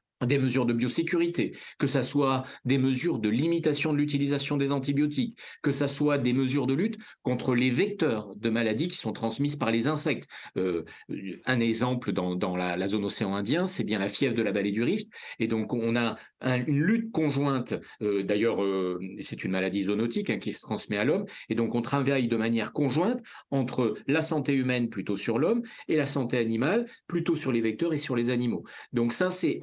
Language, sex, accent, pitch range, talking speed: French, male, French, 115-150 Hz, 205 wpm